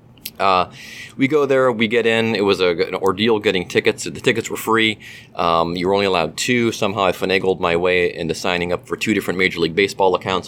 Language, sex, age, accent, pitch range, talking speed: English, male, 30-49, American, 90-125 Hz, 220 wpm